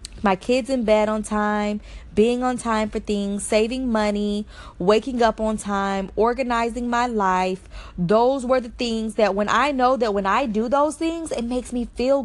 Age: 20-39